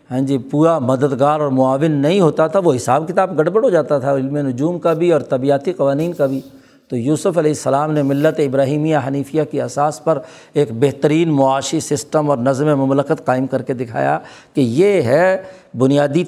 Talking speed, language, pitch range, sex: 190 wpm, Urdu, 140-185 Hz, male